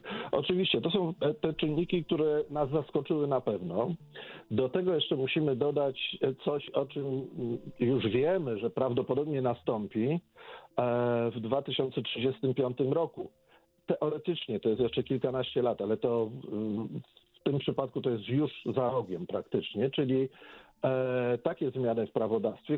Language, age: Polish, 50-69